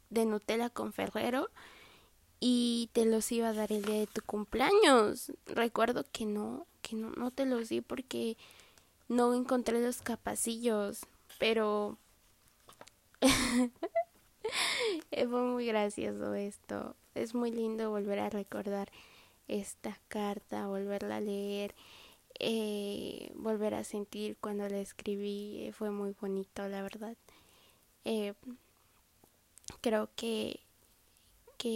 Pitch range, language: 205-240 Hz, Spanish